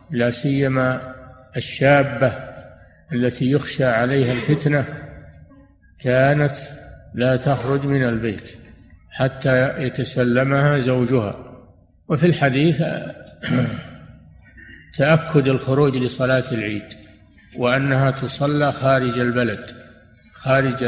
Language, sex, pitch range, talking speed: Arabic, male, 120-135 Hz, 75 wpm